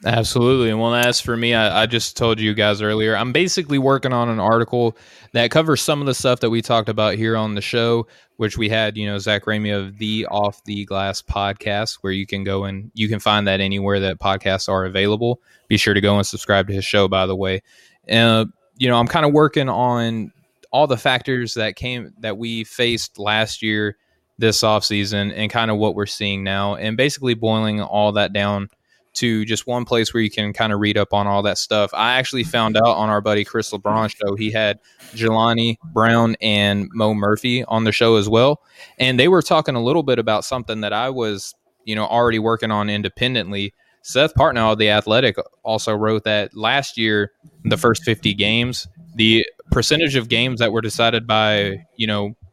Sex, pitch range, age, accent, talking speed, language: male, 105-120 Hz, 20-39, American, 210 wpm, English